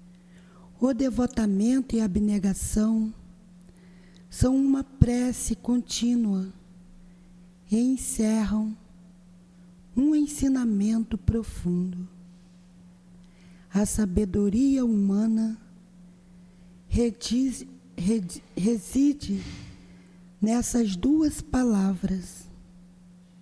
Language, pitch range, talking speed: Portuguese, 180-225 Hz, 55 wpm